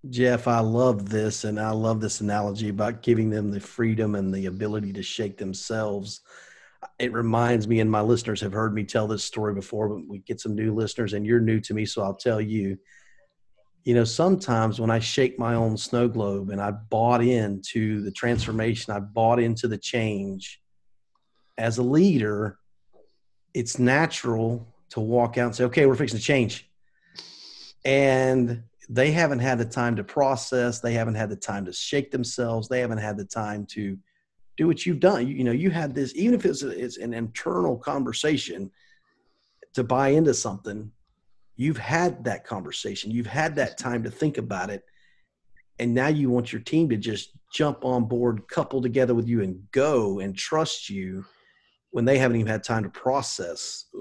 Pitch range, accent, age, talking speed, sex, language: 105-125 Hz, American, 40-59, 185 wpm, male, English